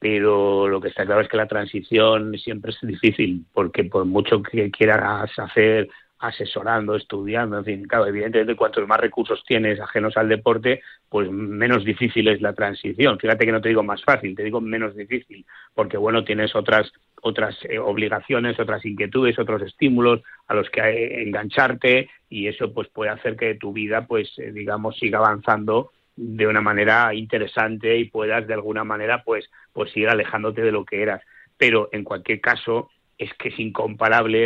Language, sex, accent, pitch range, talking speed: Spanish, male, Spanish, 105-115 Hz, 170 wpm